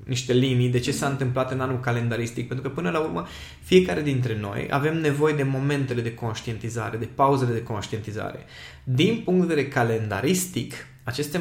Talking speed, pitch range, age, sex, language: 175 wpm, 125-175 Hz, 20-39, male, Romanian